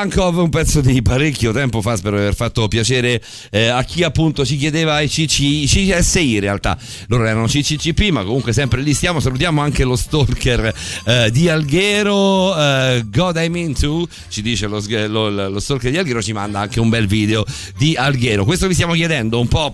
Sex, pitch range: male, 100-145 Hz